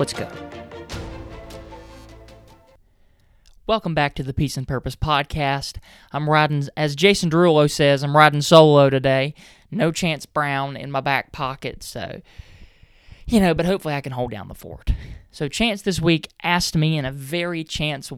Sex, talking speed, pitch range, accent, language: male, 160 wpm, 130-190 Hz, American, English